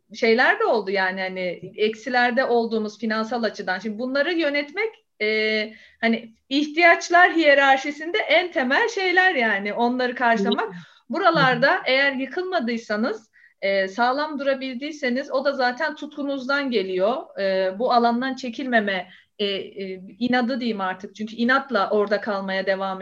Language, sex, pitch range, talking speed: Turkish, female, 215-285 Hz, 125 wpm